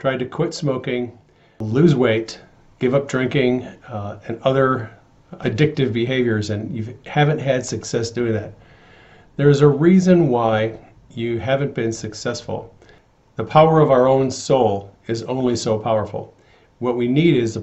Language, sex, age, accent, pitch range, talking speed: English, male, 40-59, American, 110-140 Hz, 155 wpm